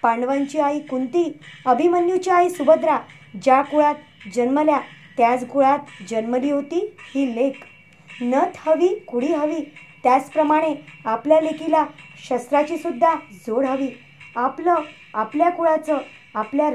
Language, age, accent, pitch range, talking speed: Marathi, 20-39, native, 255-325 Hz, 110 wpm